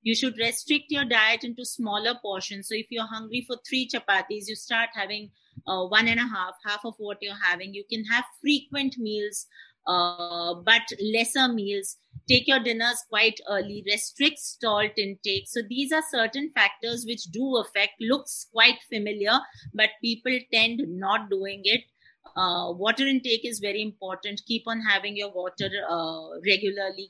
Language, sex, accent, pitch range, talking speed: English, female, Indian, 195-235 Hz, 165 wpm